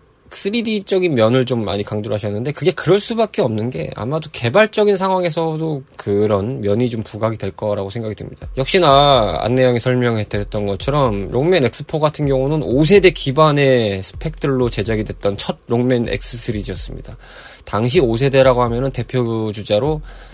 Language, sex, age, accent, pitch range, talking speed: English, male, 20-39, Korean, 110-155 Hz, 135 wpm